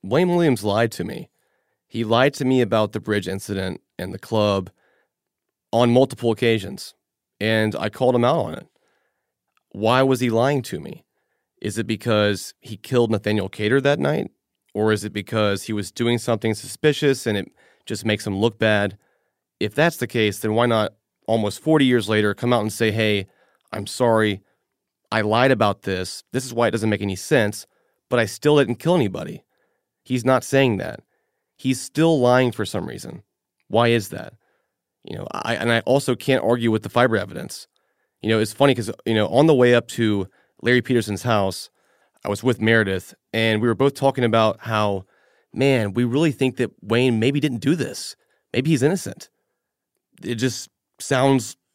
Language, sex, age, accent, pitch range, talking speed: English, male, 30-49, American, 105-130 Hz, 185 wpm